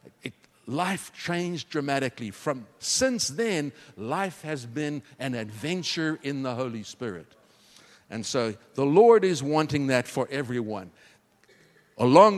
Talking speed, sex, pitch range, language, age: 120 wpm, male, 115-165 Hz, English, 60-79